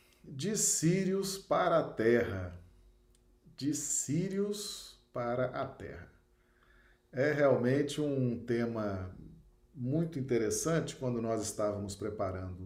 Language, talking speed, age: Portuguese, 95 wpm, 50-69